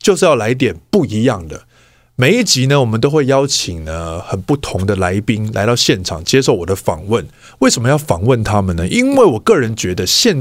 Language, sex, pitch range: Chinese, male, 105-160 Hz